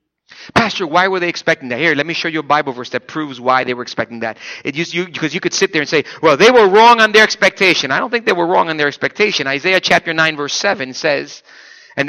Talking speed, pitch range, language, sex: 260 wpm, 155-240 Hz, English, male